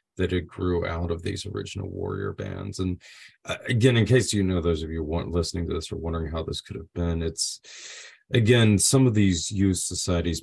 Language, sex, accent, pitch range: English, male, American, 85-100 Hz